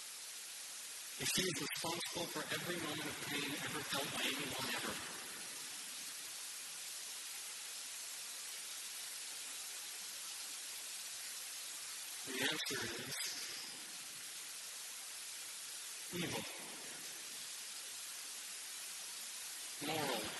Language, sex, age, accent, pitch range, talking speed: English, female, 50-69, American, 165-205 Hz, 55 wpm